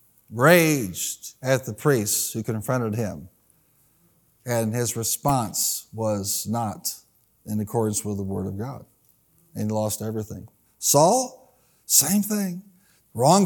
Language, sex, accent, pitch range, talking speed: English, male, American, 115-165 Hz, 120 wpm